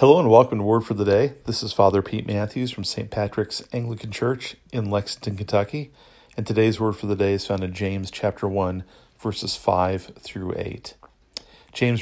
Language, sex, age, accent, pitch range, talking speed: English, male, 40-59, American, 100-115 Hz, 190 wpm